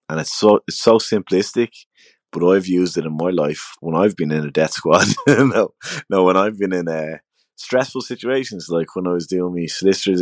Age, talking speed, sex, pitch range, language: 20-39, 210 wpm, male, 80-95 Hz, English